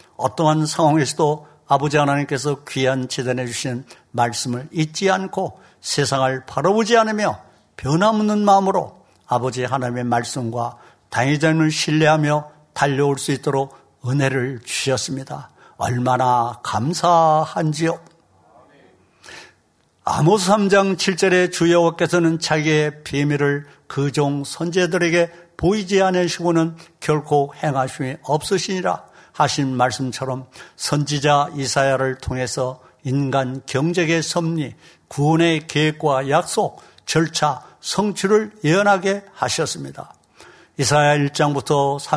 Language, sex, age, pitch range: Korean, male, 60-79, 135-165 Hz